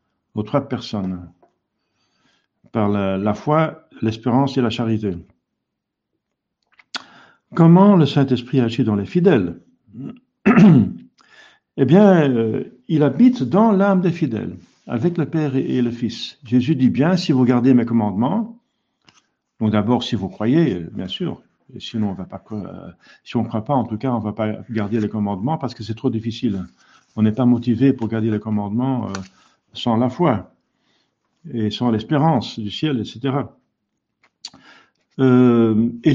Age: 50-69